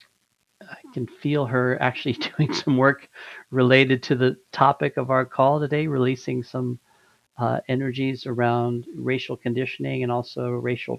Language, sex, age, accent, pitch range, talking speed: English, male, 40-59, American, 125-140 Hz, 140 wpm